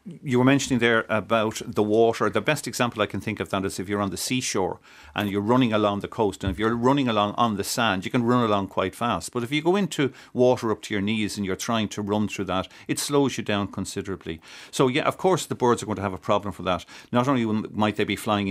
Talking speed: 270 wpm